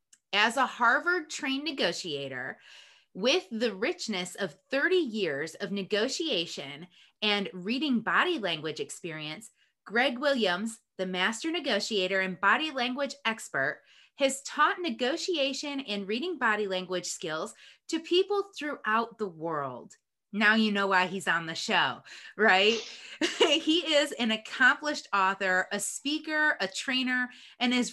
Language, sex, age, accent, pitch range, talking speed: English, female, 20-39, American, 190-275 Hz, 125 wpm